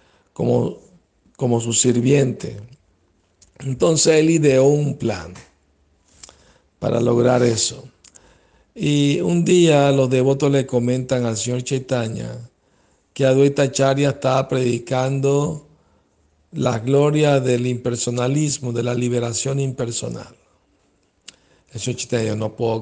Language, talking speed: Spanish, 105 wpm